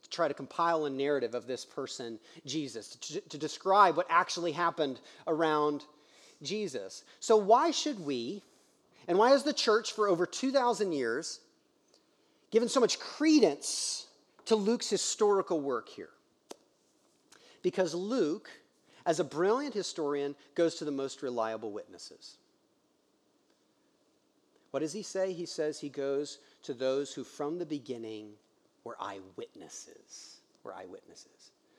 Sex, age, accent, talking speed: male, 40-59, American, 130 wpm